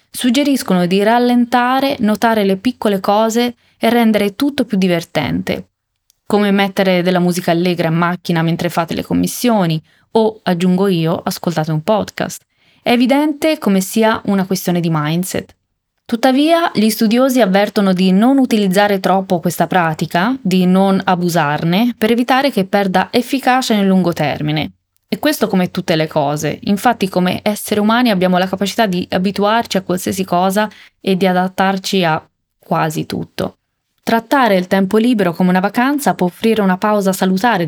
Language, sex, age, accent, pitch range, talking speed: Italian, female, 20-39, native, 180-225 Hz, 150 wpm